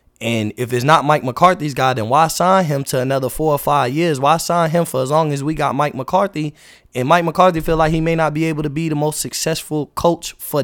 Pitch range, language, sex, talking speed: 135-165 Hz, English, male, 255 wpm